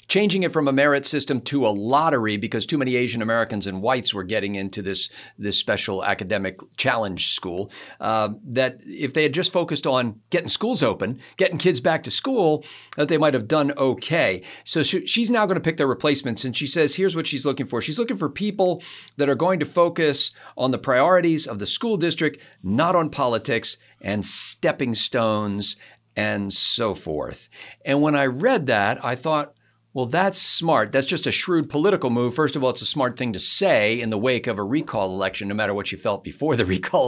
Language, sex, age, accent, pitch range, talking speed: English, male, 50-69, American, 115-160 Hz, 205 wpm